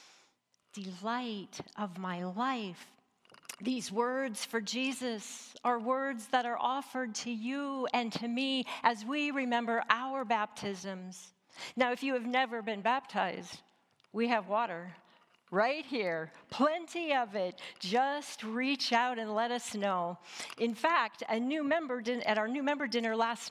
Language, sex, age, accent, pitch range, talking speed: English, female, 50-69, American, 200-255 Hz, 145 wpm